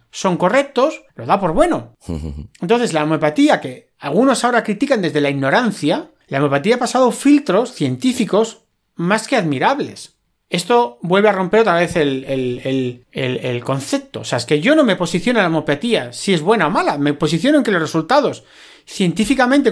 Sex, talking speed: male, 185 wpm